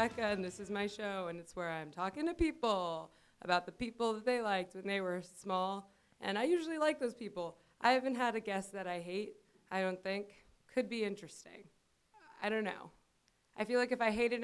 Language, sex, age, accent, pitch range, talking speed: English, female, 20-39, American, 185-225 Hz, 210 wpm